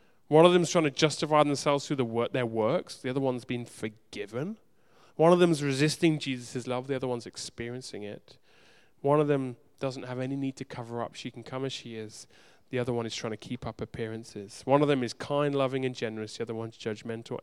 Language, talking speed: English, 225 wpm